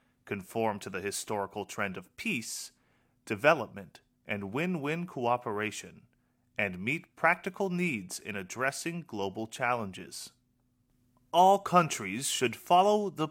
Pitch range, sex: 115-175 Hz, male